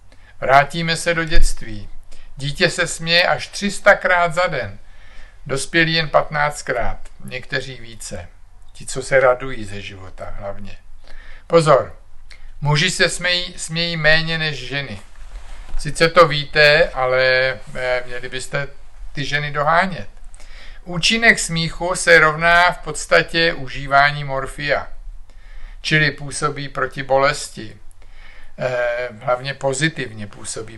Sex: male